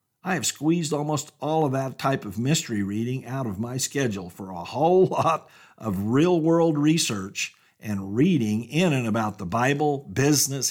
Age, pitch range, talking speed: 50-69, 115-170 Hz, 175 wpm